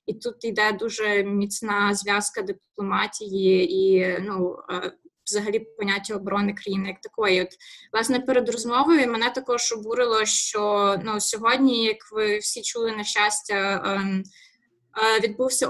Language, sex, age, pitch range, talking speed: Ukrainian, female, 20-39, 200-235 Hz, 120 wpm